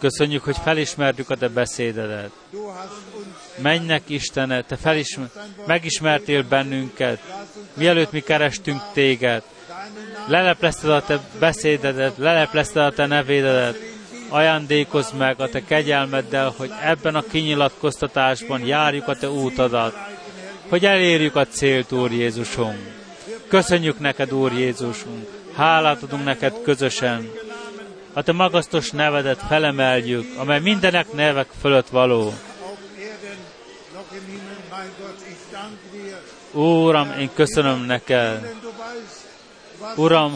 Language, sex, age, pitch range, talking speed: Hungarian, male, 30-49, 135-190 Hz, 100 wpm